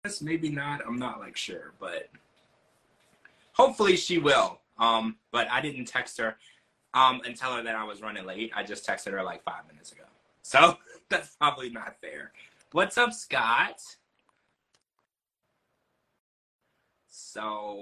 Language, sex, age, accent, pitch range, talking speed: English, male, 20-39, American, 110-150 Hz, 140 wpm